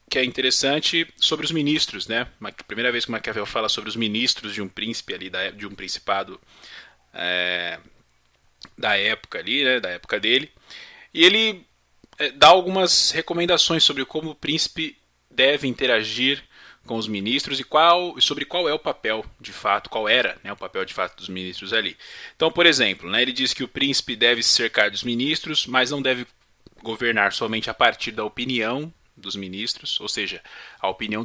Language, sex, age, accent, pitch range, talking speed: Portuguese, male, 20-39, Brazilian, 110-150 Hz, 175 wpm